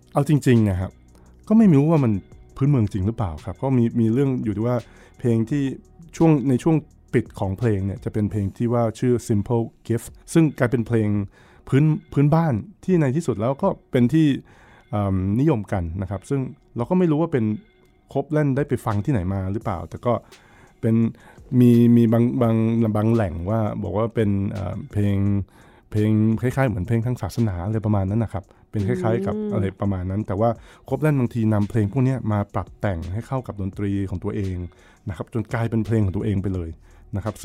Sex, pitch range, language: male, 100-125 Hz, Thai